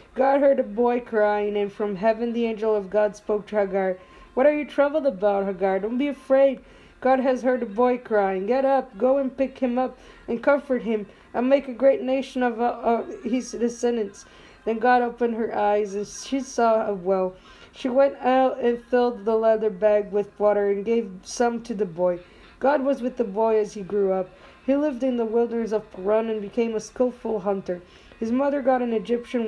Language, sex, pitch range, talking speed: Amharic, female, 215-260 Hz, 210 wpm